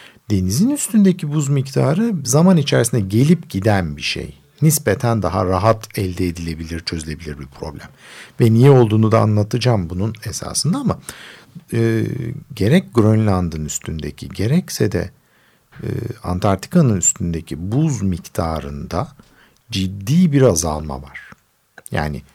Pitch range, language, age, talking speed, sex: 95-140 Hz, Turkish, 50-69, 115 wpm, male